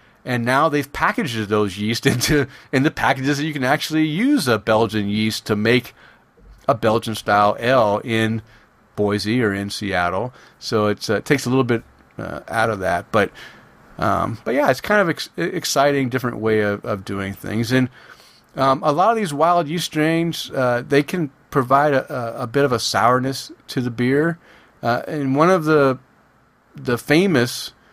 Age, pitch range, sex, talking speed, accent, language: 40-59, 105-135 Hz, male, 185 wpm, American, English